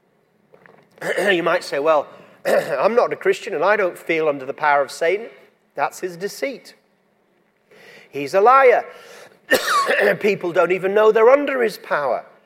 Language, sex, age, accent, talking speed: English, male, 40-59, British, 150 wpm